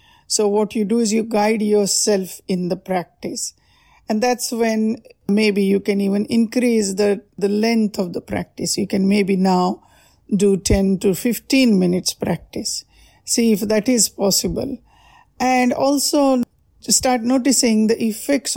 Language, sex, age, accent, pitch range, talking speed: English, female, 50-69, Indian, 200-235 Hz, 150 wpm